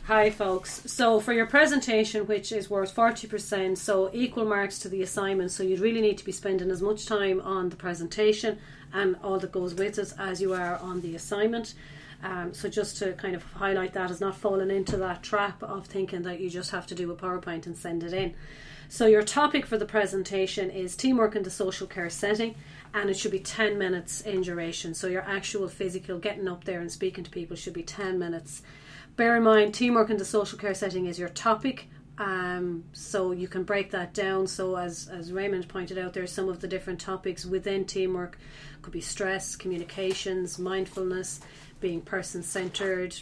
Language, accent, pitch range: English, Irish, 180-205 Hz